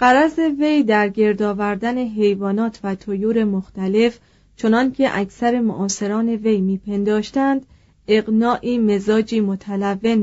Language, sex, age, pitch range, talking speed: Persian, female, 30-49, 205-245 Hz, 100 wpm